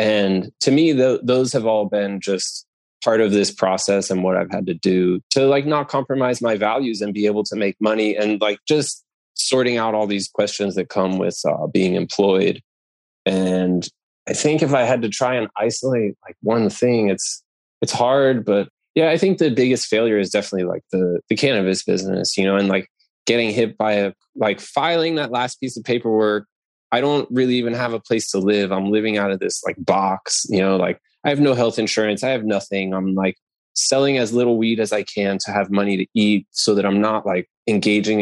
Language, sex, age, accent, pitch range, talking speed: English, male, 20-39, American, 95-120 Hz, 215 wpm